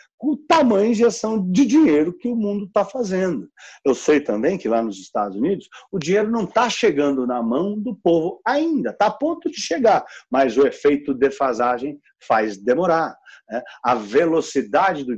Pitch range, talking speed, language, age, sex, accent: 120-185 Hz, 180 wpm, English, 40-59, male, Brazilian